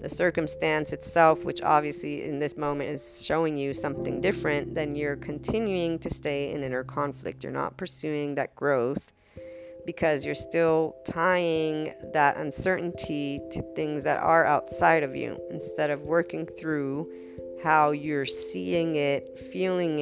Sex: female